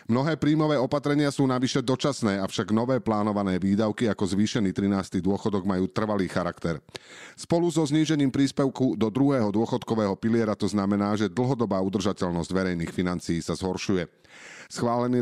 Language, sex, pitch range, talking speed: Slovak, male, 100-130 Hz, 140 wpm